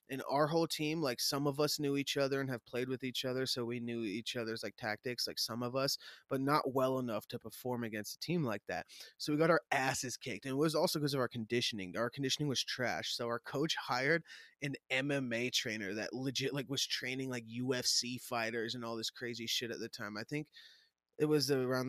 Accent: American